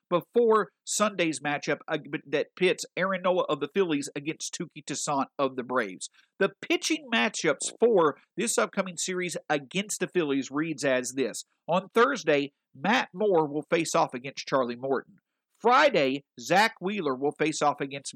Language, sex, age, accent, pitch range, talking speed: English, male, 50-69, American, 145-210 Hz, 150 wpm